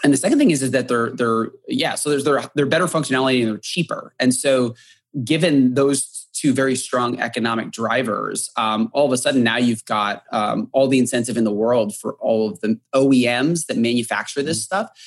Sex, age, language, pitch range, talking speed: male, 20-39, English, 115-140 Hz, 225 wpm